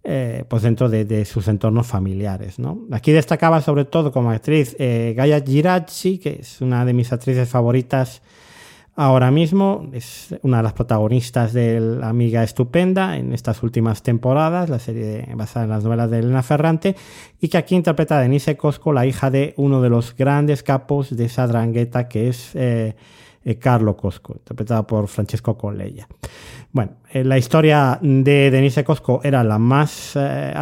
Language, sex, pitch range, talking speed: Spanish, male, 115-140 Hz, 170 wpm